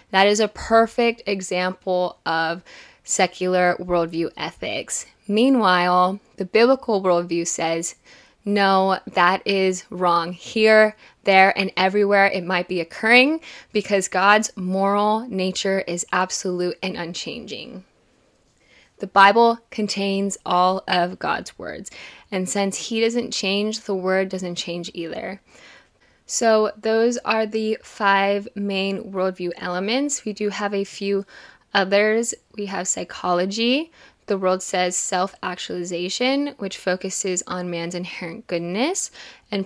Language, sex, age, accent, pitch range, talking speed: English, female, 10-29, American, 180-210 Hz, 120 wpm